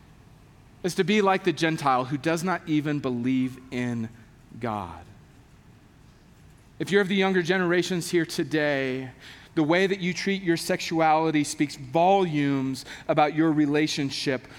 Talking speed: 135 wpm